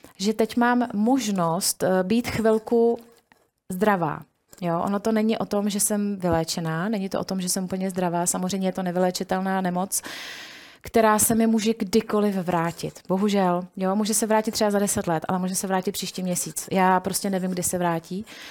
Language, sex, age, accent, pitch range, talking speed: Czech, female, 30-49, native, 185-205 Hz, 180 wpm